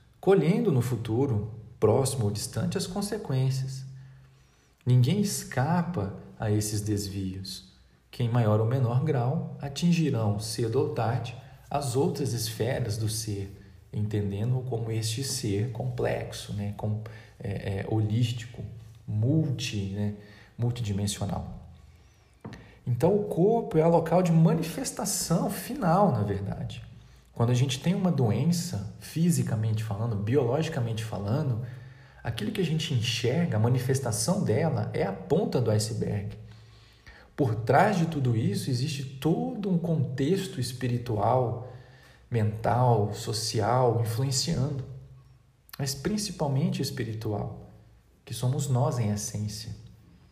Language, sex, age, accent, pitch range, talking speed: Portuguese, male, 40-59, Brazilian, 110-140 Hz, 115 wpm